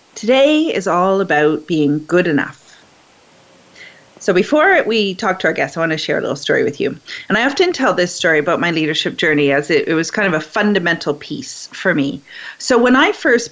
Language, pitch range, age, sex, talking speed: English, 170-230 Hz, 30-49, female, 215 wpm